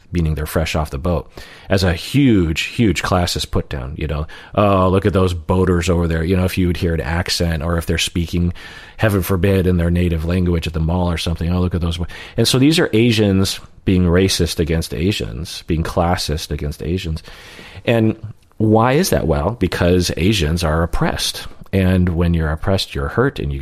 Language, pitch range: English, 80-95 Hz